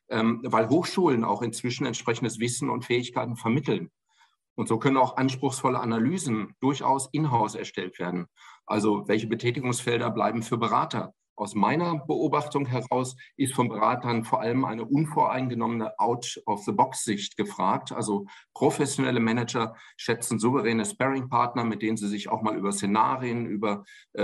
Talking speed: 135 wpm